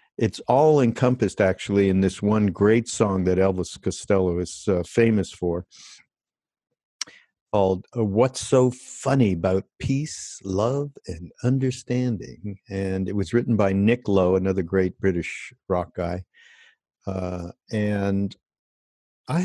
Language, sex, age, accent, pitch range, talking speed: English, male, 60-79, American, 95-125 Hz, 125 wpm